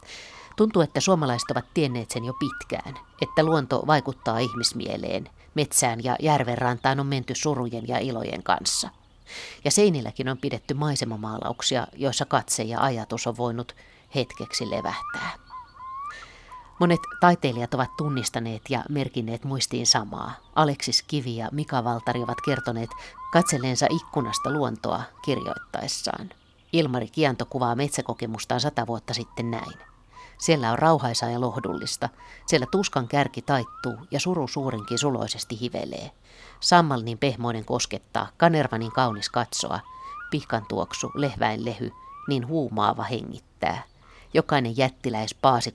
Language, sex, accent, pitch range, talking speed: Finnish, female, native, 120-150 Hz, 120 wpm